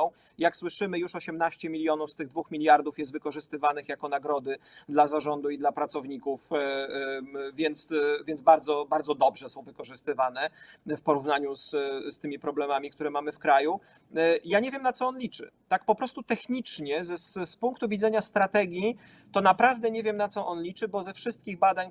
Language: Polish